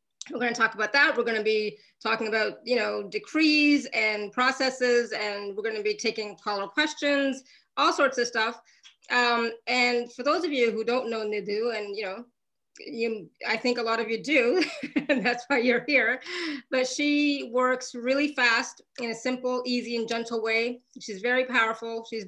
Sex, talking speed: female, 190 wpm